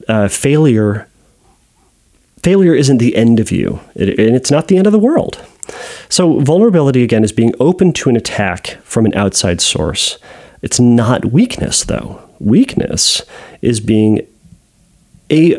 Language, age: English, 30-49